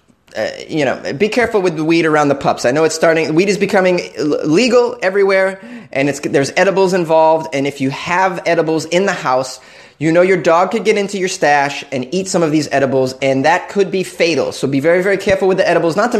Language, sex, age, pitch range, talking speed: English, male, 20-39, 145-200 Hz, 235 wpm